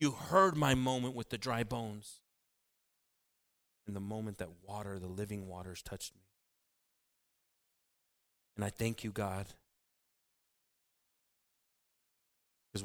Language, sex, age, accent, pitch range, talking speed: English, male, 30-49, American, 85-105 Hz, 110 wpm